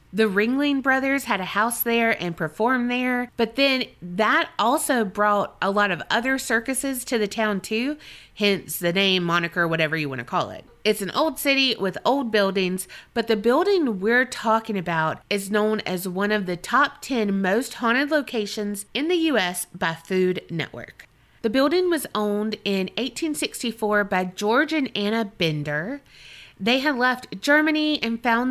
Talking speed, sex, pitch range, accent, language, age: 170 wpm, female, 185-255 Hz, American, English, 30-49